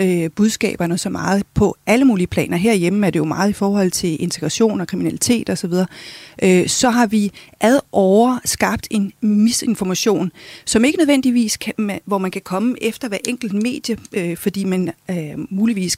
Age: 30-49